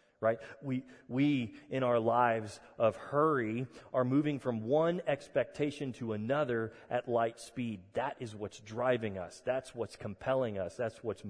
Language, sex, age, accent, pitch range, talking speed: English, male, 30-49, American, 120-155 Hz, 155 wpm